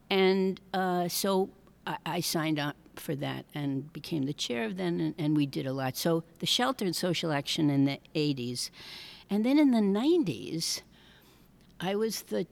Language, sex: English, female